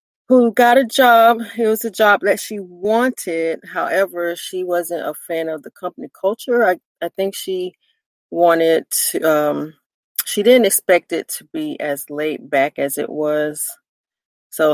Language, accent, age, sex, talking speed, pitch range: English, American, 30-49, female, 165 wpm, 160-215 Hz